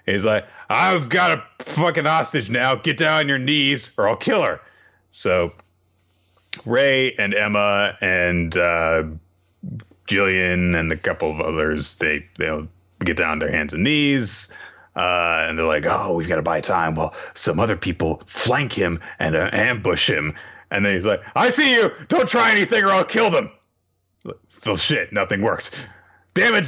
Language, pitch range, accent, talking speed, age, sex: English, 90-120 Hz, American, 175 wpm, 30-49, male